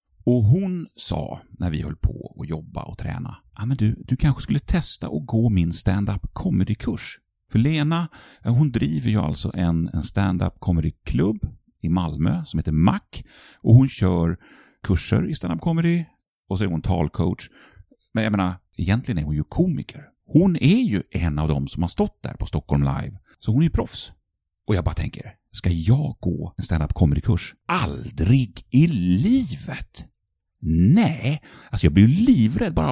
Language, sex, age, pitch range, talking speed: Swedish, male, 40-59, 85-135 Hz, 165 wpm